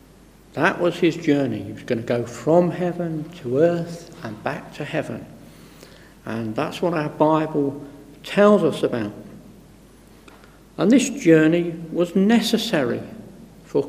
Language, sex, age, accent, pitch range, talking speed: English, male, 60-79, British, 140-180 Hz, 135 wpm